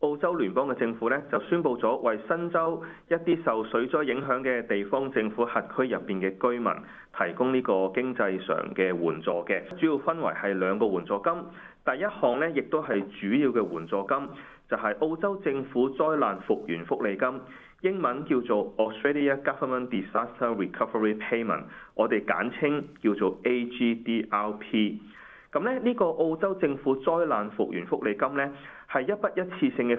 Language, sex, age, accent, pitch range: Chinese, male, 30-49, native, 105-150 Hz